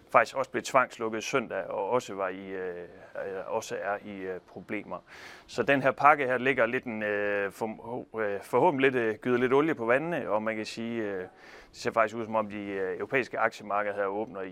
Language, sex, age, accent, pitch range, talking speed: Danish, male, 30-49, native, 100-125 Hz, 200 wpm